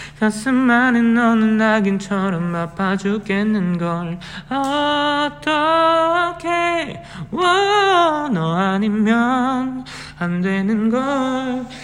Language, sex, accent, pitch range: Korean, male, native, 225-340 Hz